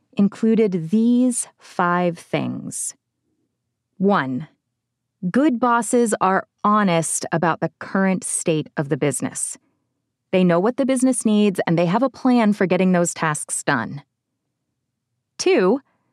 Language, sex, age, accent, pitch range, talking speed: English, female, 20-39, American, 170-220 Hz, 125 wpm